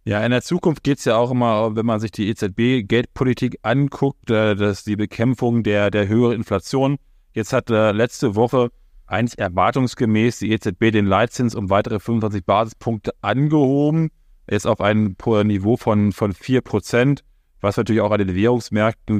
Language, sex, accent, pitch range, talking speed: German, male, German, 105-125 Hz, 165 wpm